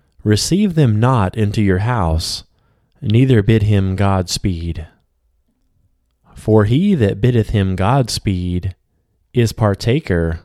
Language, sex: English, male